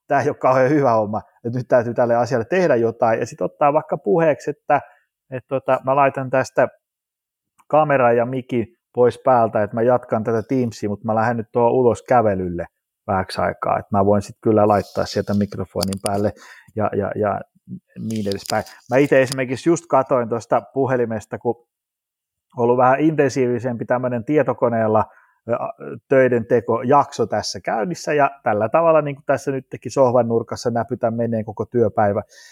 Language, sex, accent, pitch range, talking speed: Finnish, male, native, 110-130 Hz, 165 wpm